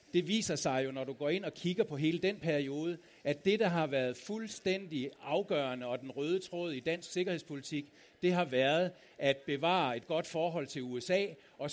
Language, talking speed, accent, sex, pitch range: Danish, 200 wpm, native, male, 140-185 Hz